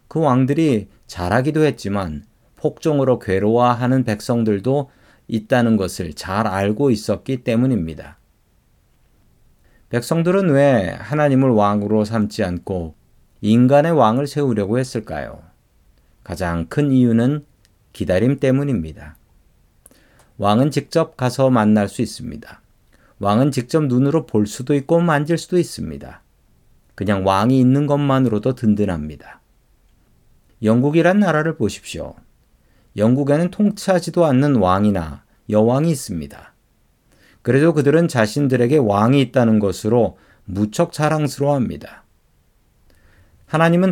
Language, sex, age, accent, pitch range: Korean, male, 40-59, native, 100-140 Hz